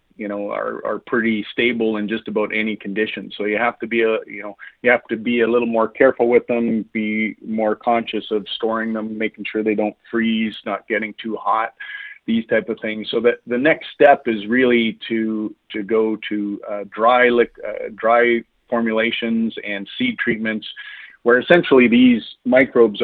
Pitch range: 105-120 Hz